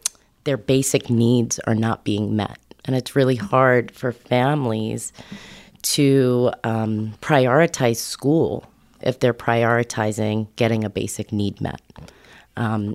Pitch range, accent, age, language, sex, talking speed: 115-135 Hz, American, 30-49, English, female, 120 wpm